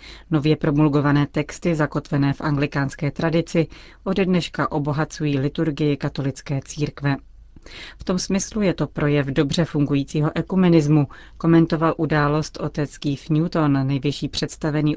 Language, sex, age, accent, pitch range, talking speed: Czech, female, 30-49, native, 145-160 Hz, 110 wpm